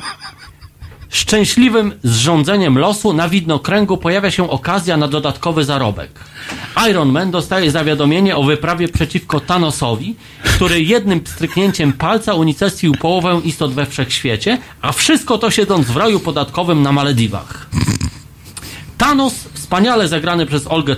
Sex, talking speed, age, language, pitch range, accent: male, 120 wpm, 40-59, Polish, 145-200 Hz, native